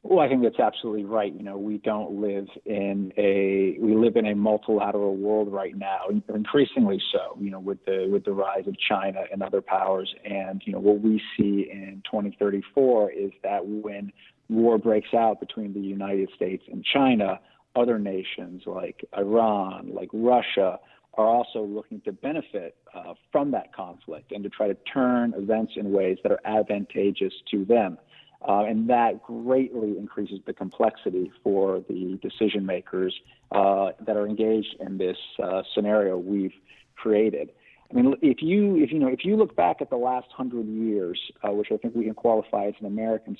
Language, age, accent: English, 40-59, American